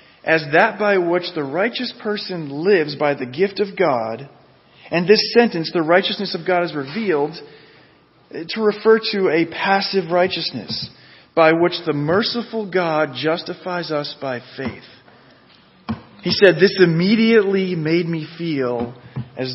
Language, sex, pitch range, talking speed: English, male, 145-185 Hz, 140 wpm